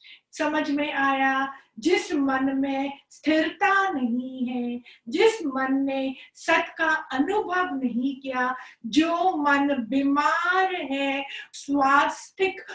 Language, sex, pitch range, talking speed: Hindi, female, 270-325 Hz, 105 wpm